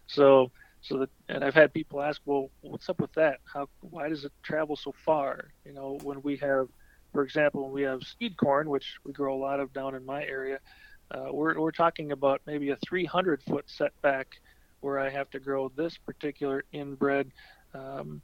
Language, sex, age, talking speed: English, male, 40-59, 200 wpm